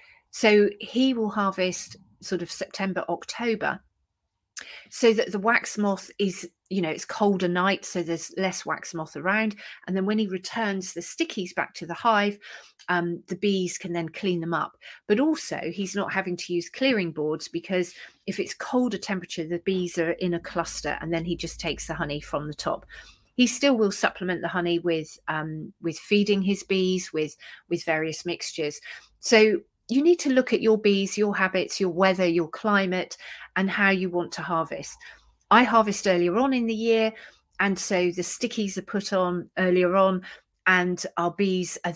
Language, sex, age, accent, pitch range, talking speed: English, female, 40-59, British, 170-205 Hz, 185 wpm